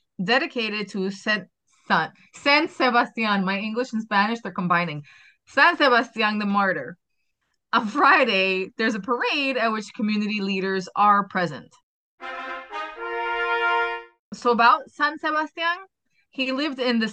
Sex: female